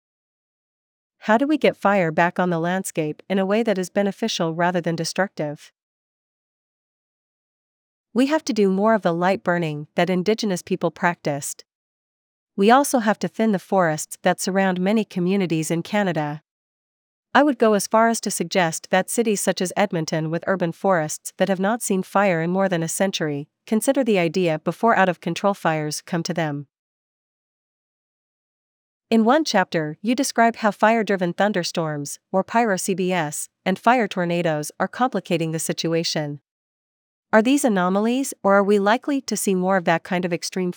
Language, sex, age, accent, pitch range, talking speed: English, female, 40-59, American, 170-210 Hz, 165 wpm